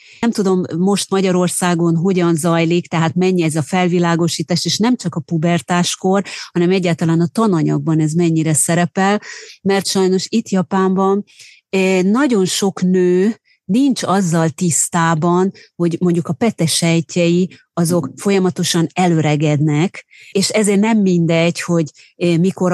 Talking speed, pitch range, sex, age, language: 125 wpm, 170-200 Hz, female, 30-49, Hungarian